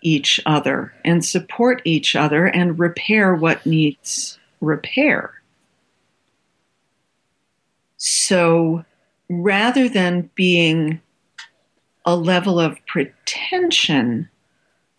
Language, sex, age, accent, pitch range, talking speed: English, female, 50-69, American, 155-210 Hz, 75 wpm